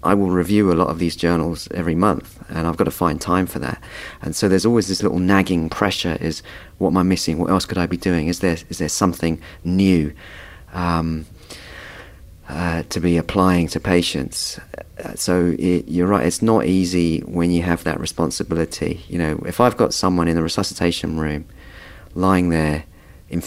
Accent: British